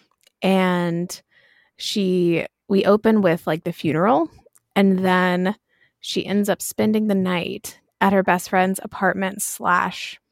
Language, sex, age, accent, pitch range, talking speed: English, female, 20-39, American, 180-205 Hz, 130 wpm